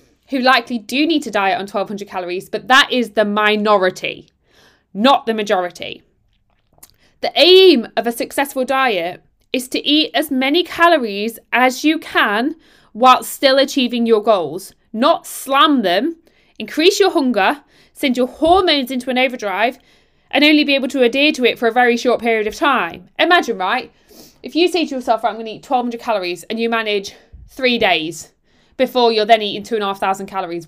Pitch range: 215-280 Hz